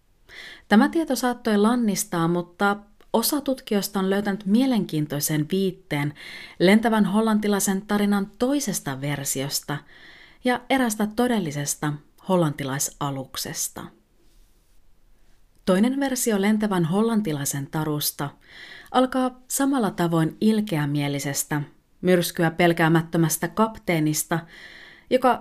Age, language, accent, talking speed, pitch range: 30-49, Finnish, native, 80 wpm, 160-220 Hz